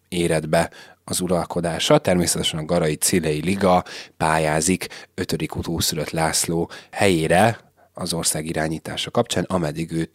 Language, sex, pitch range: Hungarian, male, 85-100 Hz